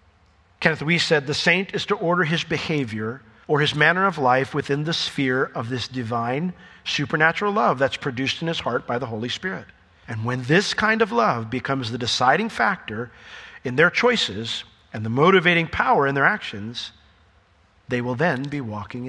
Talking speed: 180 wpm